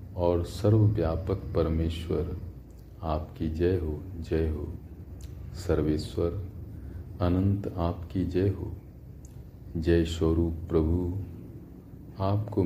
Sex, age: male, 40-59